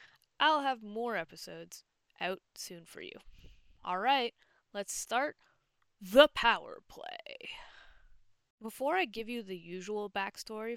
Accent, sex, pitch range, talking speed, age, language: American, female, 180-245 Hz, 115 wpm, 20-39, English